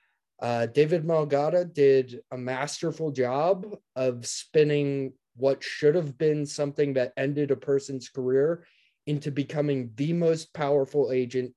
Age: 20-39